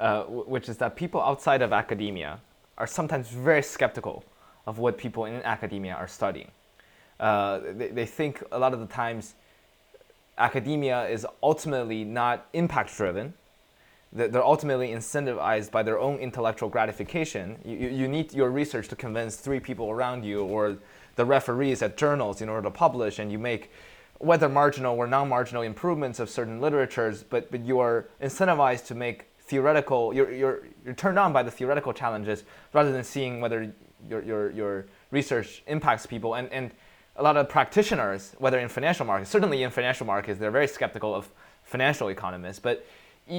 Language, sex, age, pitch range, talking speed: English, male, 20-39, 110-140 Hz, 165 wpm